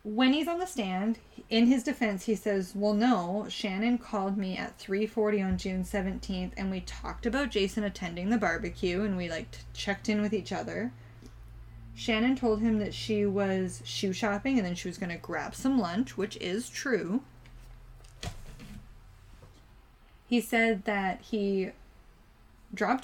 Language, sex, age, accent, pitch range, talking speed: English, female, 20-39, American, 180-225 Hz, 160 wpm